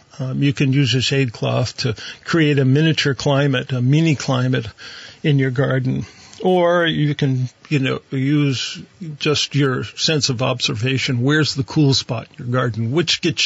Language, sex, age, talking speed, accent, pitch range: English, male, 50-69, 170 wpm, American, 130-155 Hz